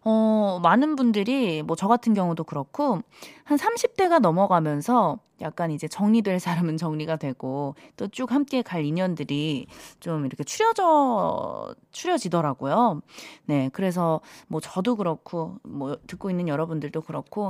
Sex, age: female, 20-39